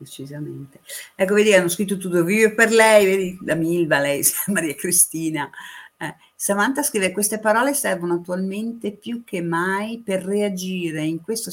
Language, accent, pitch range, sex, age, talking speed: Italian, native, 150-195 Hz, female, 50-69, 145 wpm